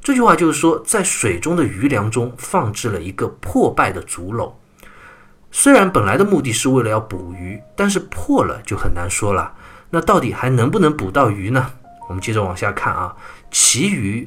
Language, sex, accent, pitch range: Chinese, male, native, 100-150 Hz